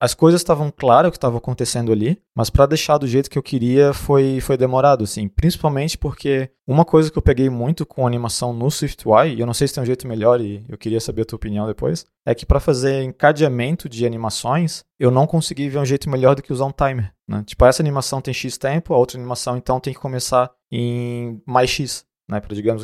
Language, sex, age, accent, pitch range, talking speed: Portuguese, male, 20-39, Brazilian, 115-135 Hz, 235 wpm